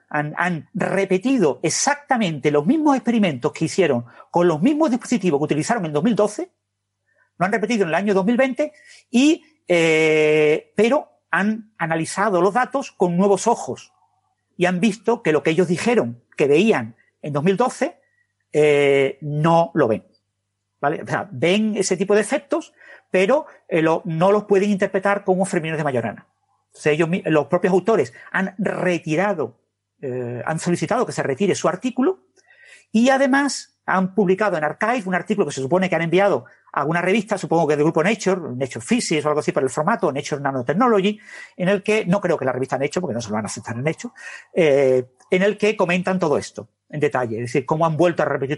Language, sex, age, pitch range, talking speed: Spanish, male, 50-69, 150-215 Hz, 185 wpm